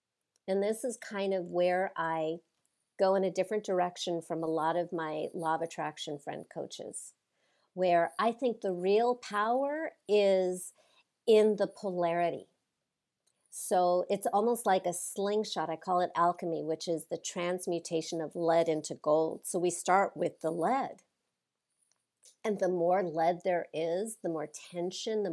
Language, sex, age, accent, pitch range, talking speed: English, female, 50-69, American, 170-210 Hz, 155 wpm